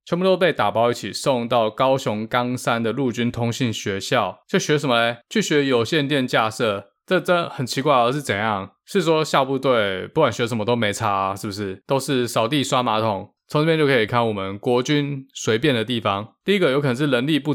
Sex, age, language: male, 20-39, Chinese